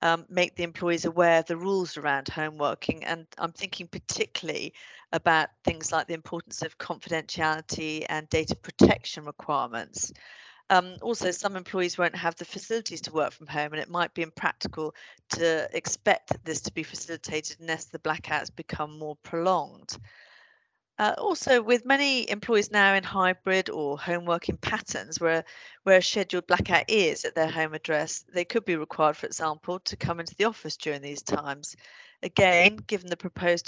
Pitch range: 160-190 Hz